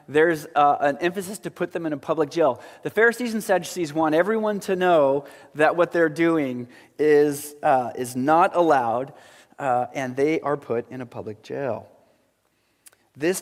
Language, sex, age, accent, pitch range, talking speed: English, male, 30-49, American, 135-185 Hz, 170 wpm